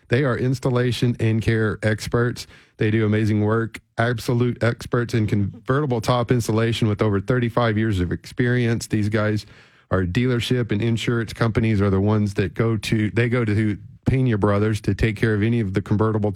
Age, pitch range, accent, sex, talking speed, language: 40-59, 105-120 Hz, American, male, 175 wpm, English